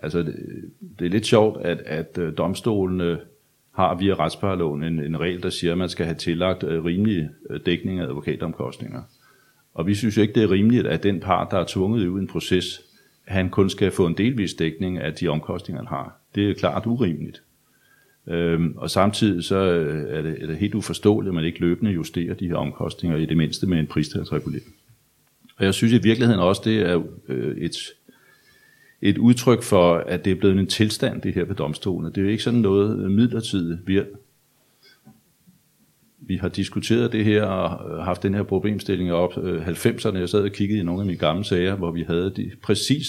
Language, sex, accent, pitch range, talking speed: Danish, male, native, 85-105 Hz, 200 wpm